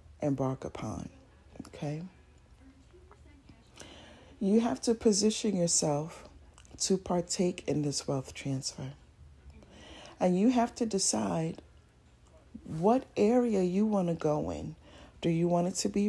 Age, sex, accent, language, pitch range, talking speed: 40-59, female, American, English, 155-215 Hz, 120 wpm